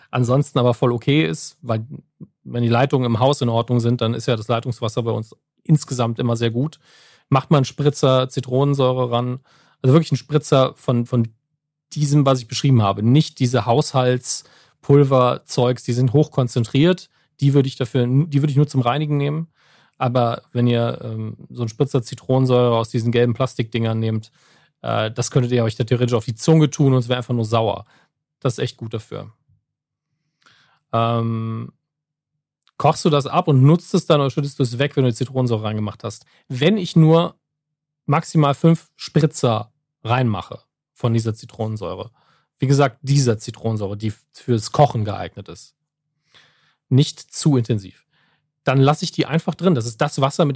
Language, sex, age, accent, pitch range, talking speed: German, male, 40-59, German, 120-150 Hz, 170 wpm